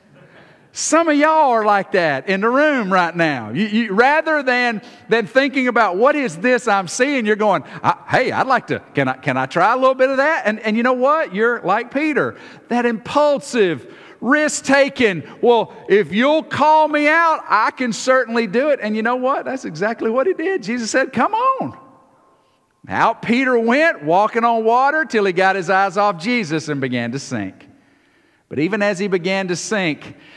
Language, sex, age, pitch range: English, male, 50-69, 175-245 Hz